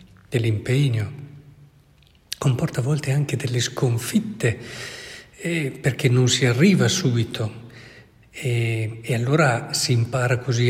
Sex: male